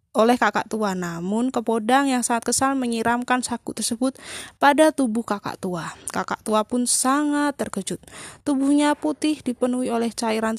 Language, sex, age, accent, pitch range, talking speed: Indonesian, female, 20-39, native, 200-250 Hz, 140 wpm